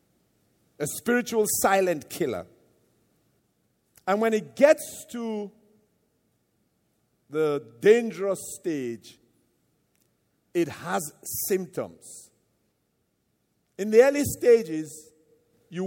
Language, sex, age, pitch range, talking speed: English, male, 50-69, 150-215 Hz, 75 wpm